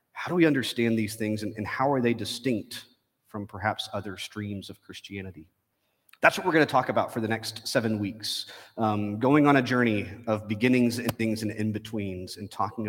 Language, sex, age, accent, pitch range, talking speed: English, male, 30-49, American, 105-135 Hz, 195 wpm